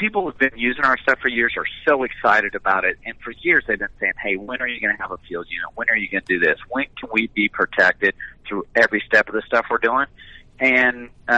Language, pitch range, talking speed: English, 110-135 Hz, 265 wpm